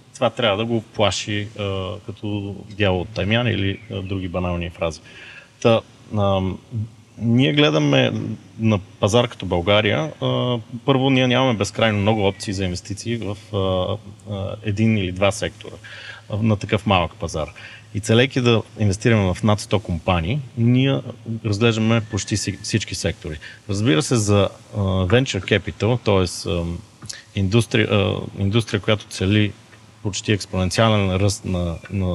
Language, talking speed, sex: Bulgarian, 120 wpm, male